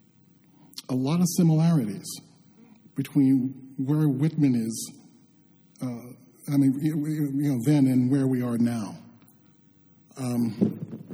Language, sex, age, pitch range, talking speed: English, male, 50-69, 120-155 Hz, 100 wpm